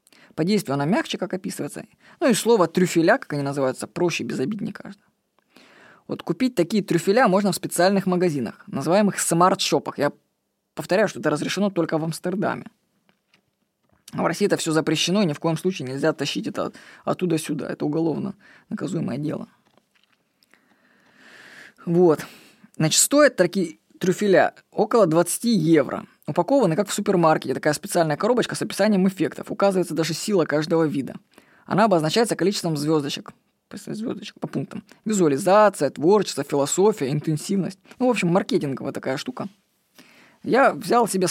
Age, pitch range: 20-39, 160-205 Hz